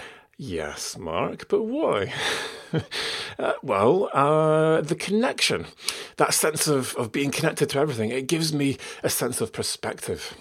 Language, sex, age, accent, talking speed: English, male, 30-49, British, 140 wpm